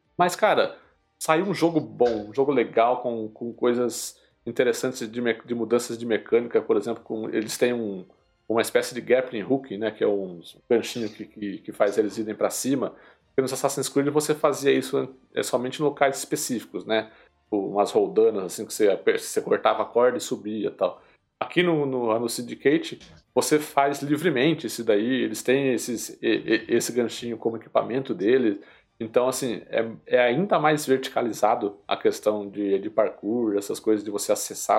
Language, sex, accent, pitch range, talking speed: Portuguese, male, Brazilian, 115-165 Hz, 175 wpm